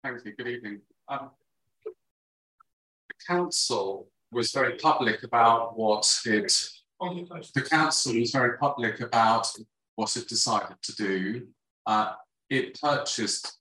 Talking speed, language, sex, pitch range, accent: 120 wpm, English, male, 100-120 Hz, British